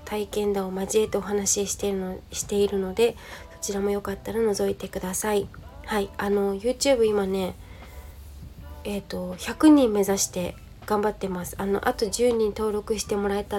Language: Japanese